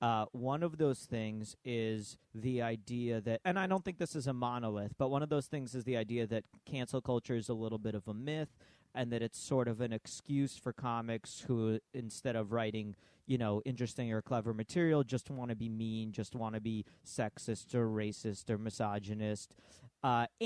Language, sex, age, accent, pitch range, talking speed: English, male, 40-59, American, 110-140 Hz, 200 wpm